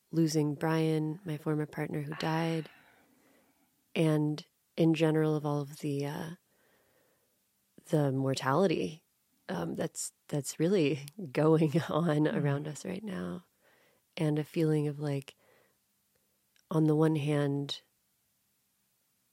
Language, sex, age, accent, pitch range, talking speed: English, female, 30-49, American, 145-170 Hz, 110 wpm